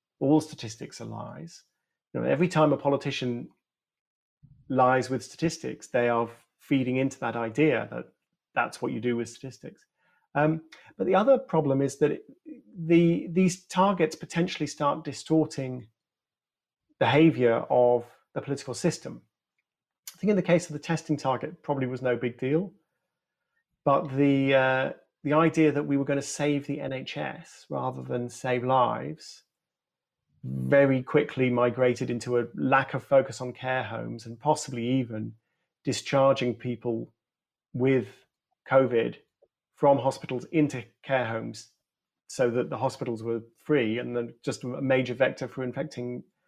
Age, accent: 40-59, British